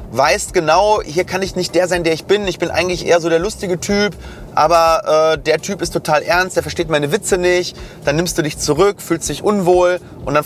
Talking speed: 235 wpm